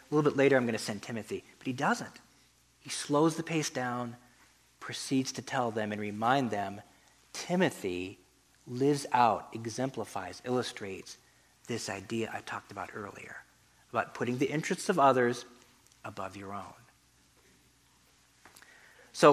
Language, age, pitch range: English, 40-59, 115-150 Hz